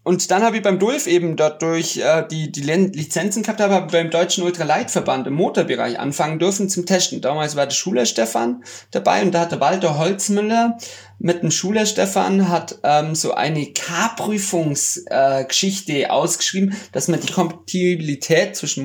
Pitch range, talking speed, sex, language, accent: 135-175 Hz, 170 wpm, male, German, German